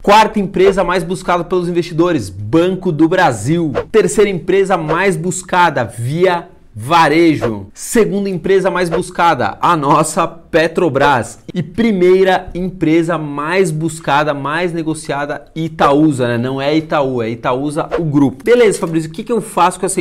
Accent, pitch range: Brazilian, 145-175 Hz